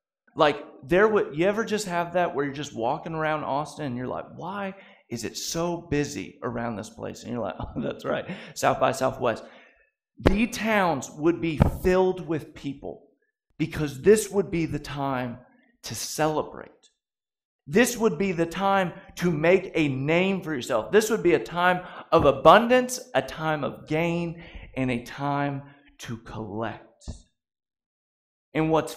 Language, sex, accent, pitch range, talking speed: English, male, American, 140-190 Hz, 160 wpm